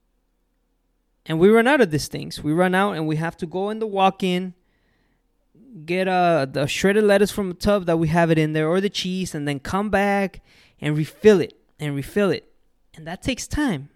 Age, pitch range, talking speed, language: 20-39, 150-195 Hz, 210 wpm, English